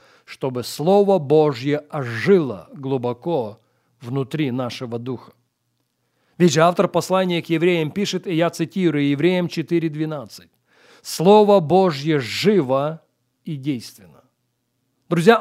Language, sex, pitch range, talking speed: Russian, male, 155-215 Hz, 100 wpm